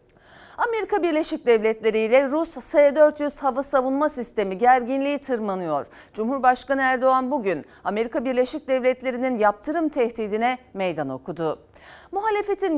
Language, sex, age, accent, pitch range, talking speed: Turkish, female, 40-59, native, 215-305 Hz, 105 wpm